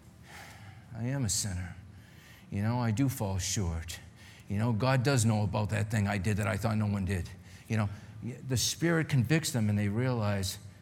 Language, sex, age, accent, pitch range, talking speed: English, male, 50-69, American, 100-130 Hz, 195 wpm